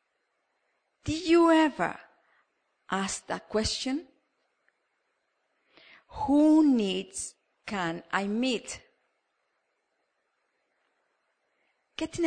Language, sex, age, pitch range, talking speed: English, female, 40-59, 185-280 Hz, 60 wpm